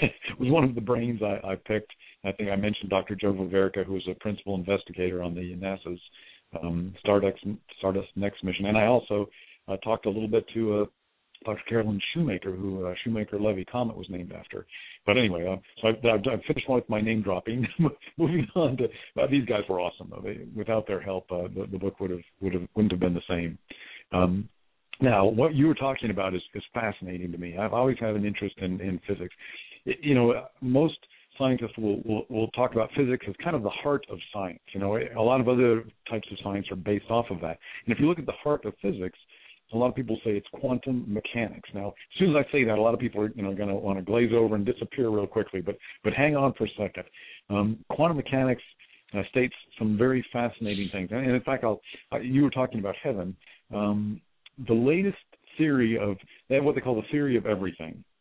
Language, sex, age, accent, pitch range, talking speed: English, male, 50-69, American, 95-125 Hz, 225 wpm